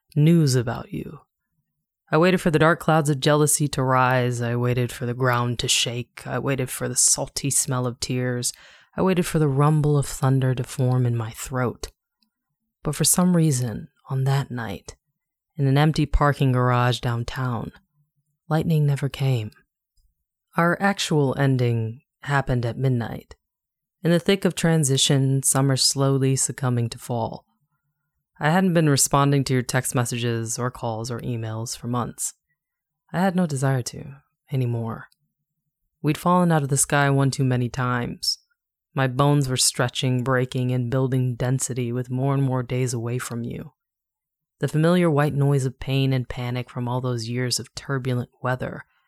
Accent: American